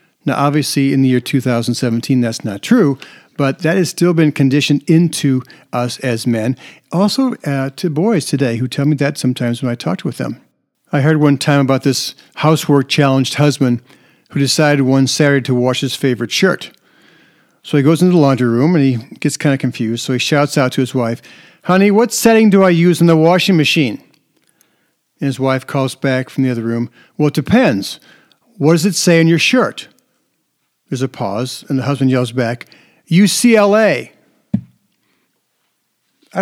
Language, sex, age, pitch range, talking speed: English, male, 50-69, 130-165 Hz, 185 wpm